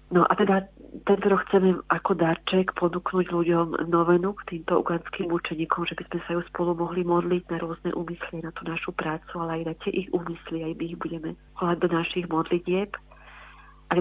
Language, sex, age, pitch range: Slovak, female, 40-59, 165-180 Hz